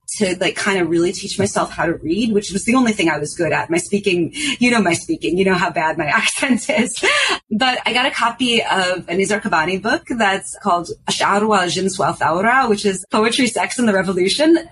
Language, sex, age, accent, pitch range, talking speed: English, female, 30-49, American, 180-240 Hz, 210 wpm